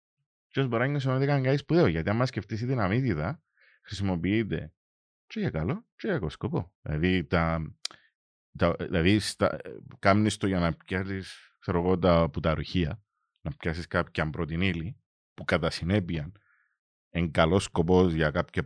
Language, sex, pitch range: English, male, 85-125 Hz